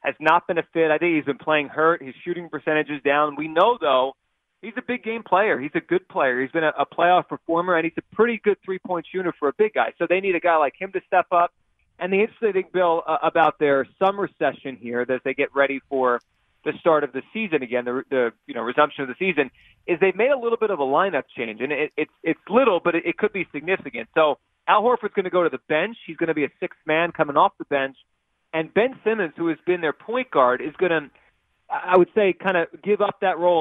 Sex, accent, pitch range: male, American, 145-190 Hz